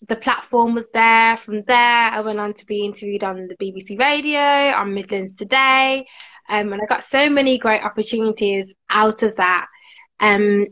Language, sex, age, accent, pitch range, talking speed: English, female, 20-39, British, 205-250 Hz, 175 wpm